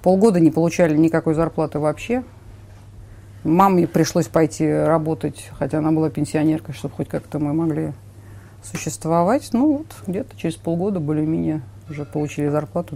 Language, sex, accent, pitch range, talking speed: Russian, female, native, 120-165 Hz, 135 wpm